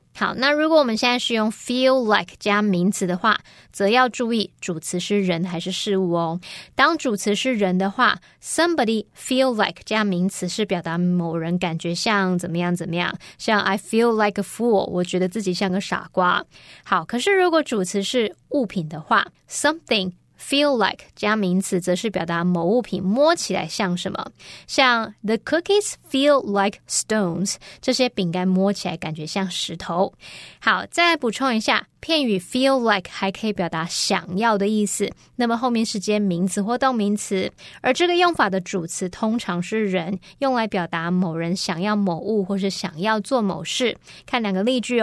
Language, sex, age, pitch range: Chinese, female, 20-39, 185-245 Hz